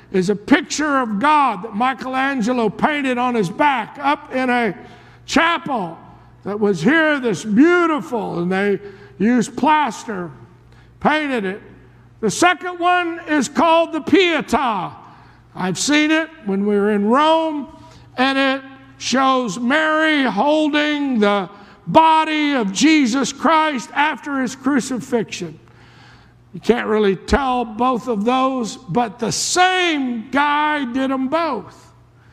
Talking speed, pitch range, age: 125 wpm, 205-285 Hz, 60-79